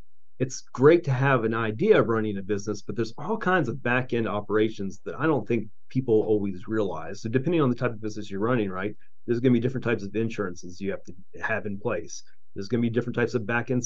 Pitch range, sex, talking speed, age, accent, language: 105-130 Hz, male, 235 wpm, 30-49, American, English